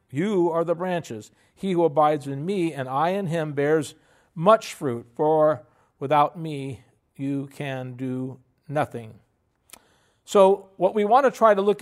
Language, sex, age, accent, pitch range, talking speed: English, male, 50-69, American, 140-180 Hz, 155 wpm